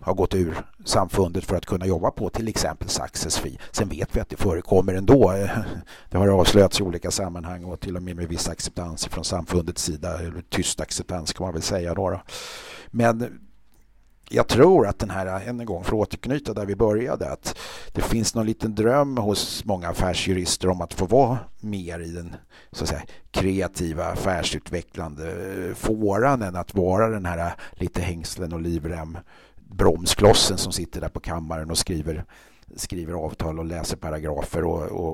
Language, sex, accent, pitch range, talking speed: Swedish, male, native, 85-100 Hz, 165 wpm